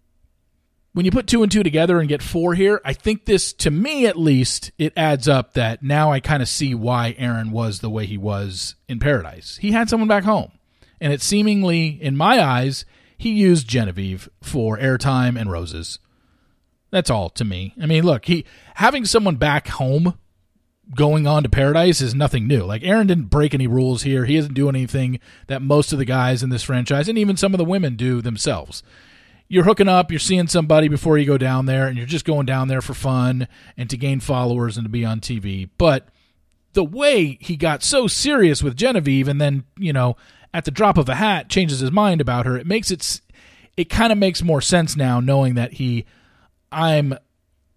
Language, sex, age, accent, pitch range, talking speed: English, male, 40-59, American, 120-165 Hz, 210 wpm